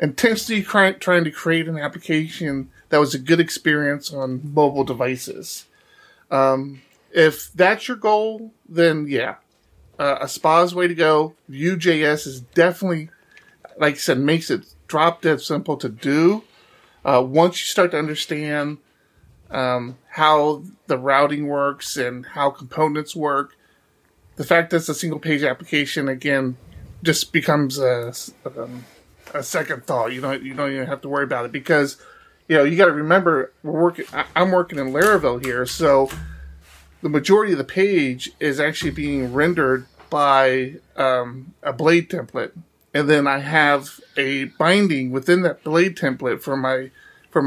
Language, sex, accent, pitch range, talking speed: English, male, American, 135-170 Hz, 155 wpm